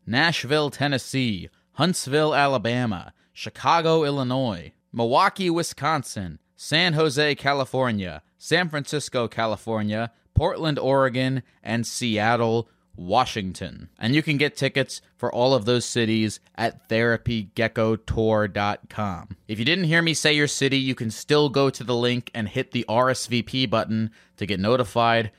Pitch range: 105-130 Hz